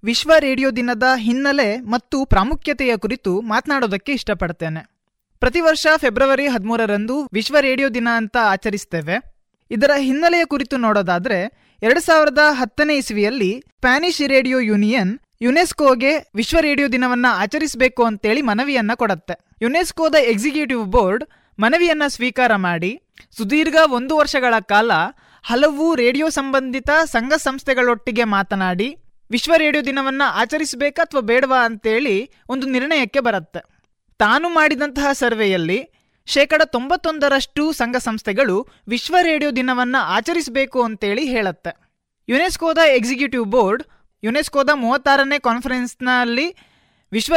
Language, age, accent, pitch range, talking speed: Kannada, 20-39, native, 230-290 Hz, 100 wpm